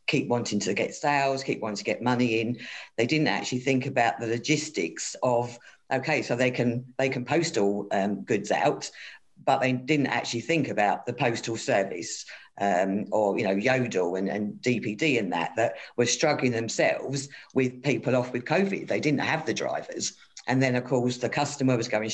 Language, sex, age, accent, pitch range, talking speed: English, female, 50-69, British, 120-145 Hz, 190 wpm